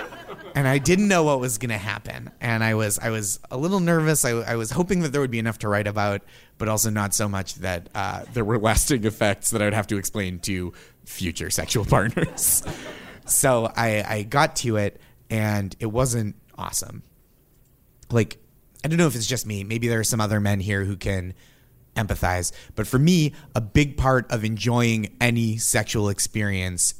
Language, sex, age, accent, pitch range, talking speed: English, male, 30-49, American, 110-150 Hz, 195 wpm